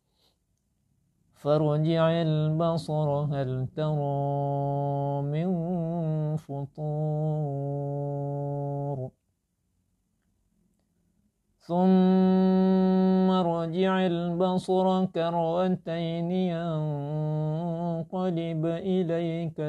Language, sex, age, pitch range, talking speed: Indonesian, male, 50-69, 140-165 Hz, 35 wpm